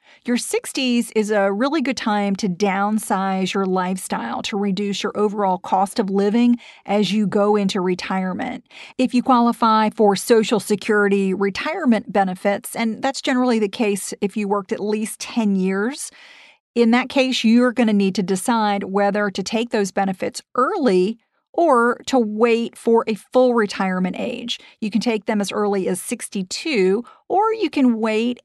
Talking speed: 165 wpm